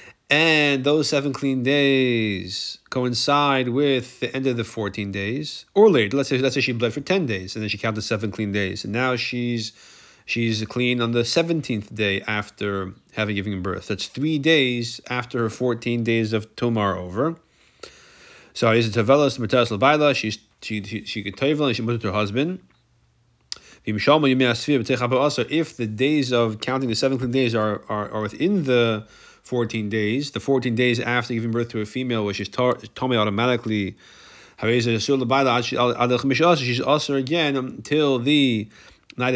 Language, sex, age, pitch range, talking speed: English, male, 30-49, 110-140 Hz, 150 wpm